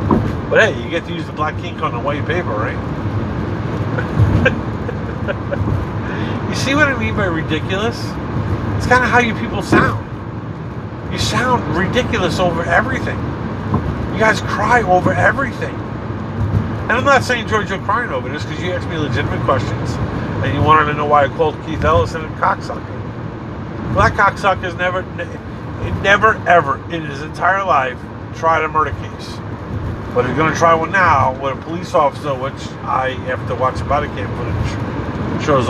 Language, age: English, 50-69